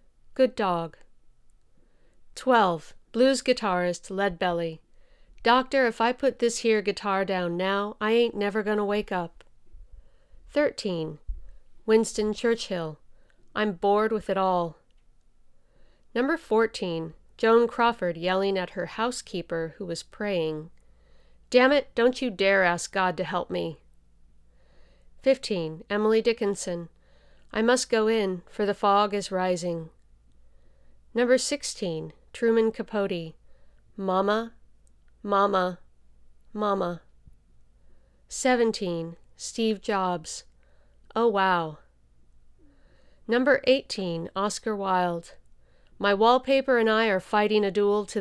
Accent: American